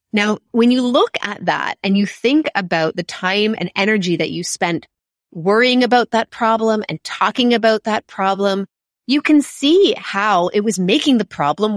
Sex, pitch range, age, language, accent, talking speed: female, 190-255 Hz, 30-49, English, American, 180 wpm